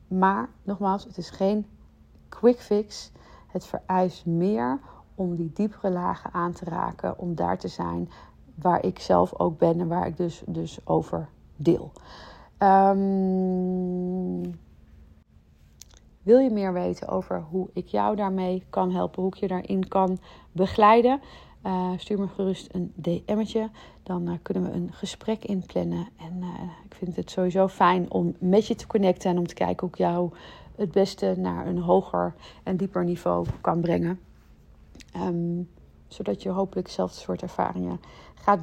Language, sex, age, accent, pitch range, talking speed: Dutch, female, 40-59, Dutch, 165-190 Hz, 155 wpm